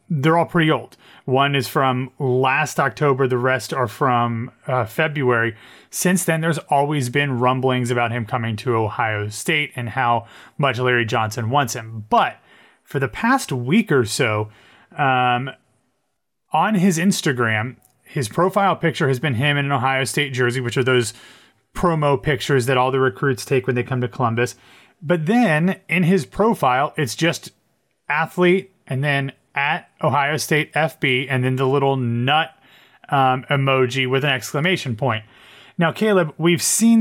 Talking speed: 160 wpm